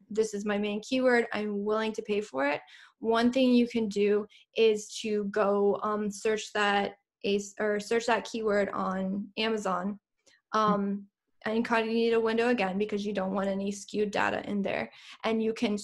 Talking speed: 185 wpm